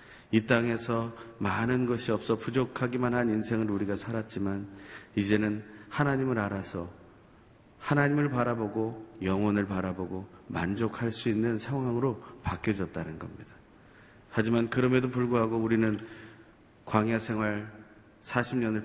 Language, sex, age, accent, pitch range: Korean, male, 40-59, native, 100-120 Hz